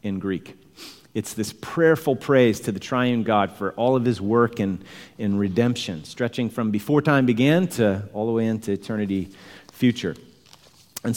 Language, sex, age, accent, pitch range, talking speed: English, male, 40-59, American, 100-125 Hz, 165 wpm